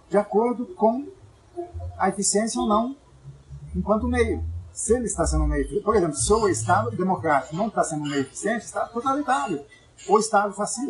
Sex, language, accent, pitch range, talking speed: male, Portuguese, Brazilian, 145-210 Hz, 180 wpm